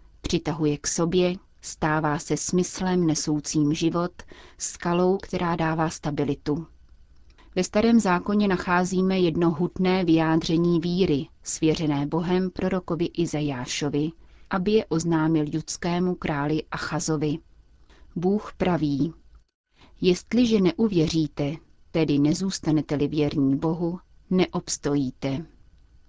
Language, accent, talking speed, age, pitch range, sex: Czech, native, 85 wpm, 30-49, 150-180 Hz, female